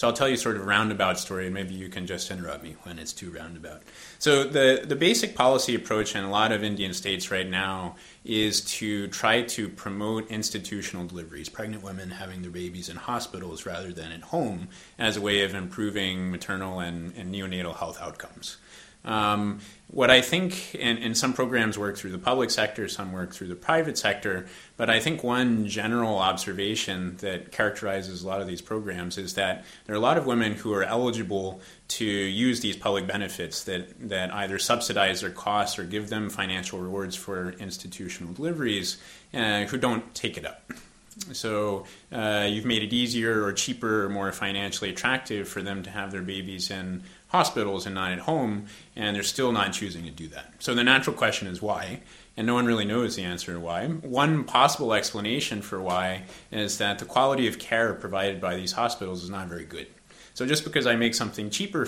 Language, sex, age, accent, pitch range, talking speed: English, male, 30-49, American, 95-115 Hz, 200 wpm